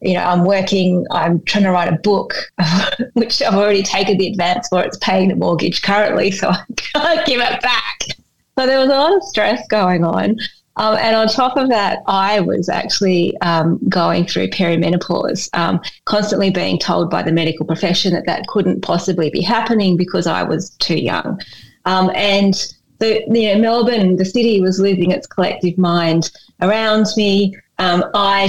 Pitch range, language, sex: 175-210 Hz, English, female